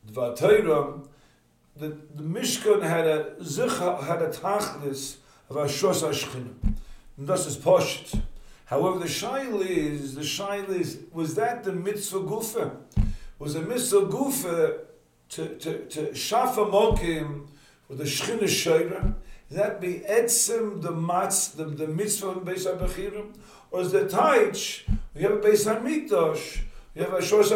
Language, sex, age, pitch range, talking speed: English, male, 50-69, 150-210 Hz, 130 wpm